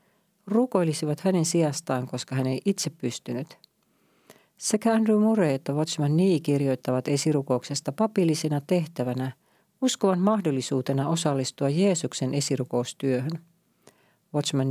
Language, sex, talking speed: Finnish, female, 100 wpm